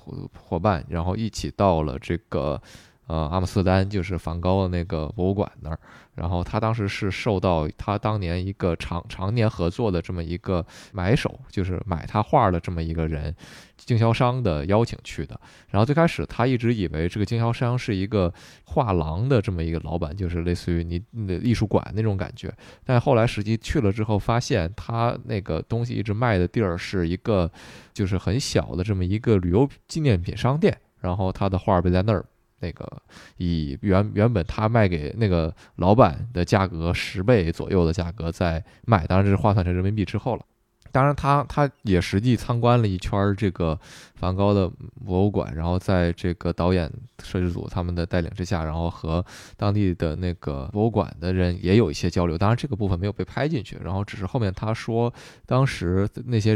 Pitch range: 90-110 Hz